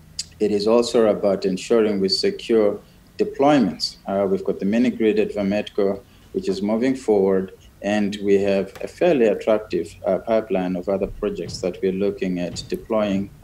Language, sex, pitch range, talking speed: English, male, 95-115 Hz, 160 wpm